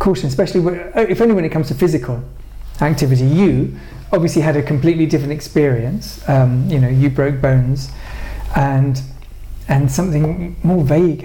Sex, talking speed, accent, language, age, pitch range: male, 155 wpm, British, English, 40-59, 130-165 Hz